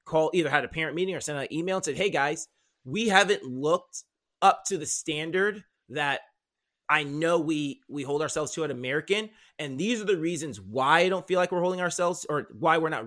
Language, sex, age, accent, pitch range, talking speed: English, male, 30-49, American, 135-180 Hz, 225 wpm